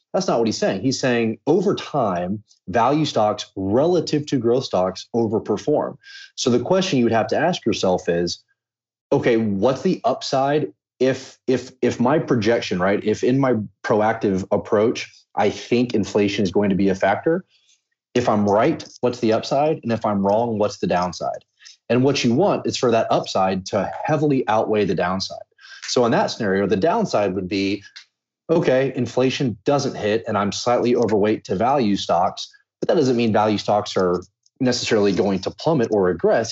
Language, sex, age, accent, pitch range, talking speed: English, male, 30-49, American, 100-130 Hz, 175 wpm